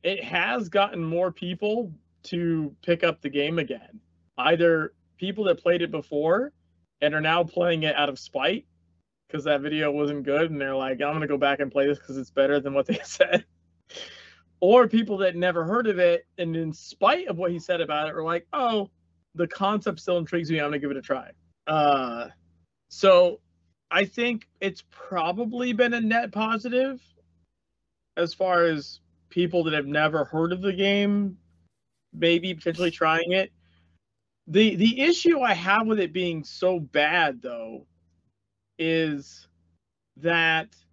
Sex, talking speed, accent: male, 170 wpm, American